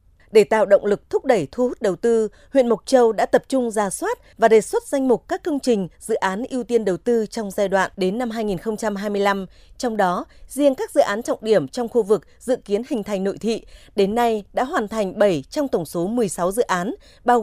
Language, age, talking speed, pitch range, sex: Vietnamese, 20-39, 235 wpm, 205-255 Hz, female